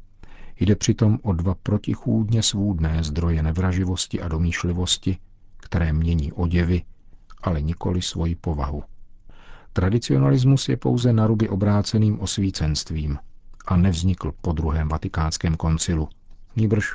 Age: 50-69